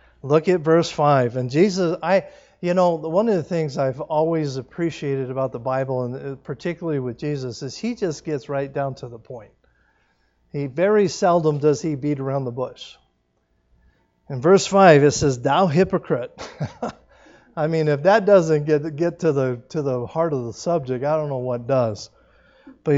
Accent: American